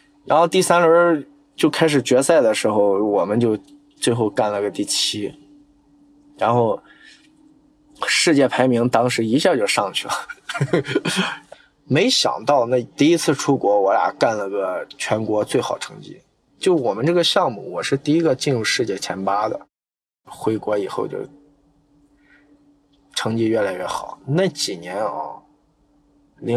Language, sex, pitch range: Chinese, male, 115-160 Hz